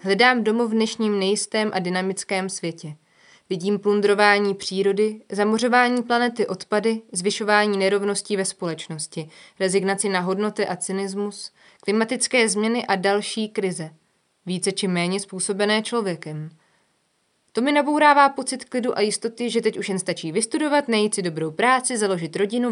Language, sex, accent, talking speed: Czech, female, native, 135 wpm